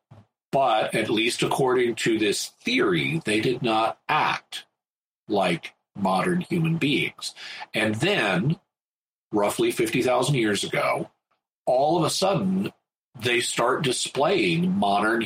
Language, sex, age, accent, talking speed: English, male, 40-59, American, 120 wpm